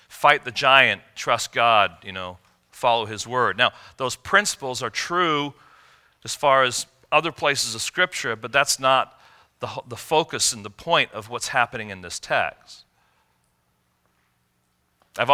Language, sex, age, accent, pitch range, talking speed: English, male, 40-59, American, 95-125 Hz, 150 wpm